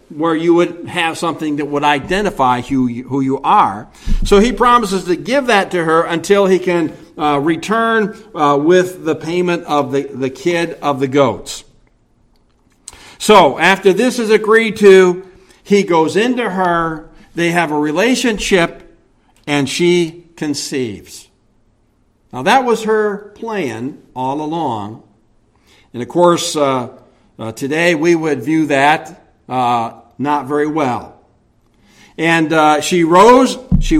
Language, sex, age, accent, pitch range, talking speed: English, male, 60-79, American, 135-180 Hz, 140 wpm